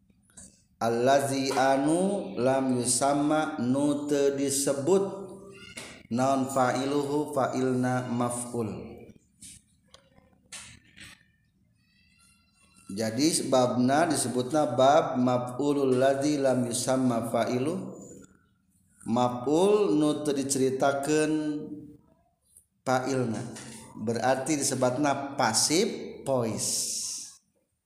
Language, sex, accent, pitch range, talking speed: Indonesian, male, native, 125-150 Hz, 65 wpm